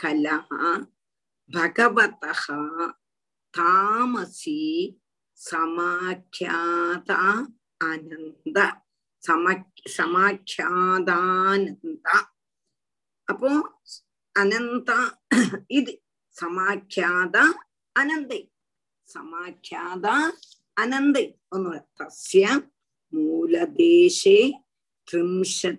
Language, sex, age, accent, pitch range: Tamil, female, 50-69, native, 180-305 Hz